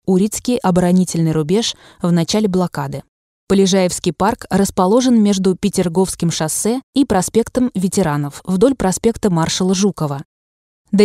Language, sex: Russian, female